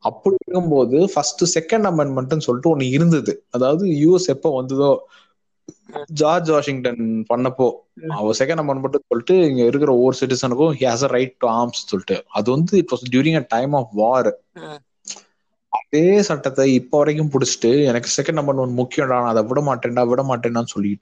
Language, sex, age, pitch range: Tamil, male, 20-39, 120-165 Hz